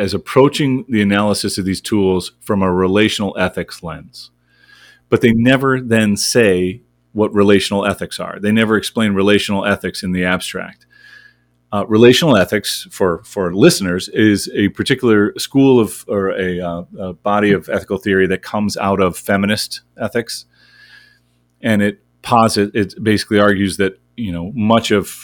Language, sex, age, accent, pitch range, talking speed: English, male, 30-49, American, 85-105 Hz, 155 wpm